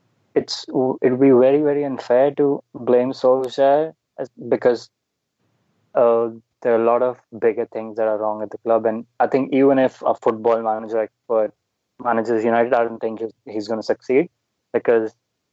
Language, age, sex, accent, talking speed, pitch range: English, 20-39, male, Indian, 175 wpm, 115-130 Hz